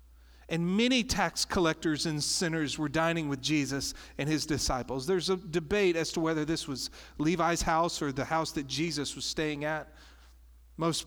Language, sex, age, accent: English, male, 40-59, American